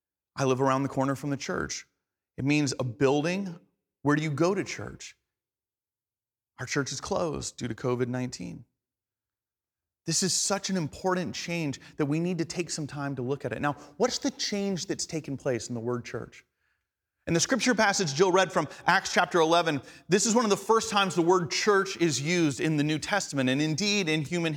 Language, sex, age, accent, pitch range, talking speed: English, male, 30-49, American, 155-210 Hz, 205 wpm